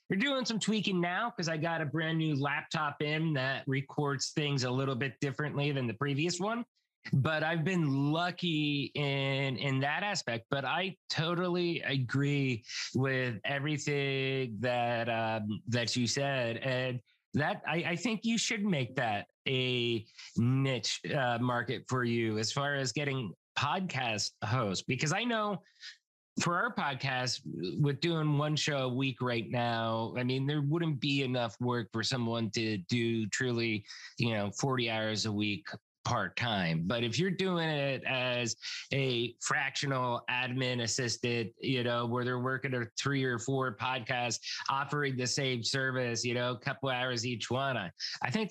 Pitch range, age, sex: 120-150 Hz, 30-49, male